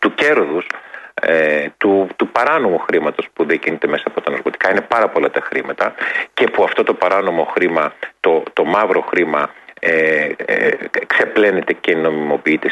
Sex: male